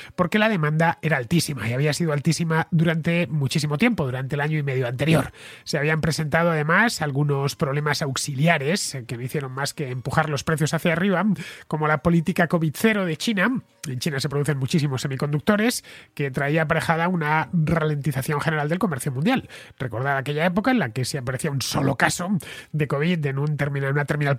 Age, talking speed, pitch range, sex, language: 30-49, 185 wpm, 140-165 Hz, male, Spanish